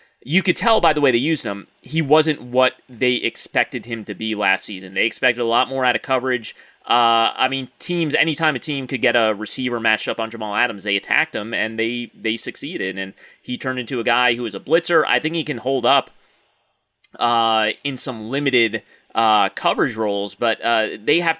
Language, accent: English, American